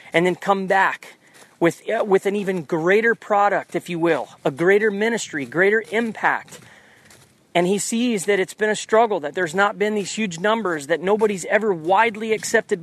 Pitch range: 185-235 Hz